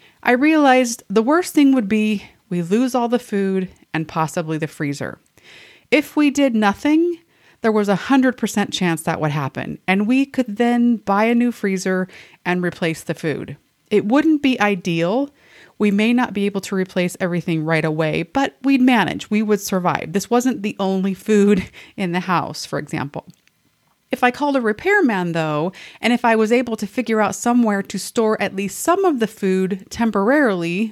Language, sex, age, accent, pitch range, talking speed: English, female, 30-49, American, 185-245 Hz, 180 wpm